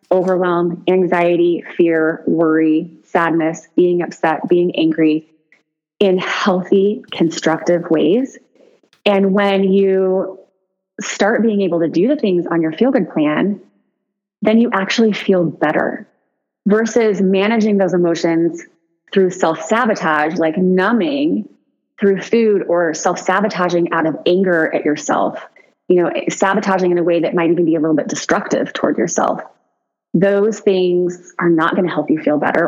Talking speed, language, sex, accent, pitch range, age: 140 wpm, English, female, American, 170-220 Hz, 20-39